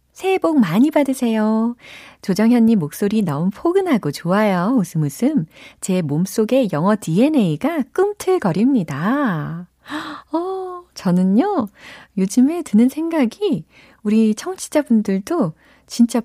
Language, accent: Korean, native